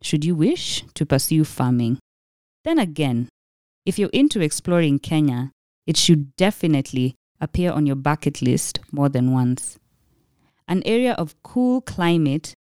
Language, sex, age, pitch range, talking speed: English, female, 20-39, 145-180 Hz, 135 wpm